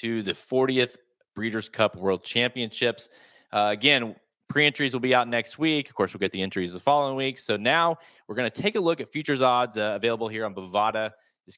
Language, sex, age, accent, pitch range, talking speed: English, male, 20-39, American, 95-120 Hz, 210 wpm